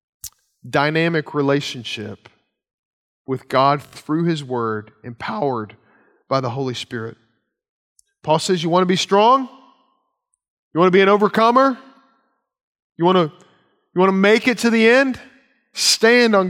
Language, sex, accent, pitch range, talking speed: English, male, American, 155-215 Hz, 130 wpm